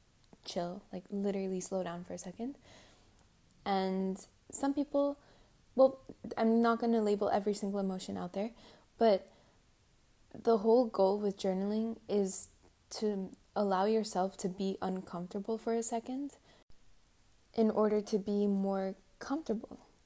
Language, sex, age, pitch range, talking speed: English, female, 10-29, 195-225 Hz, 130 wpm